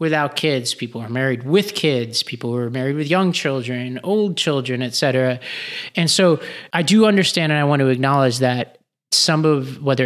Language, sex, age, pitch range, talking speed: English, male, 30-49, 130-160 Hz, 190 wpm